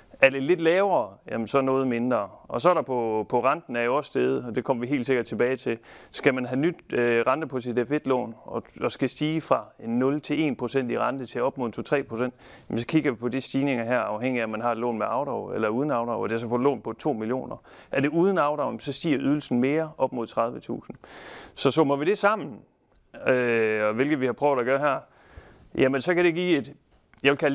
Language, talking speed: Danish, 240 wpm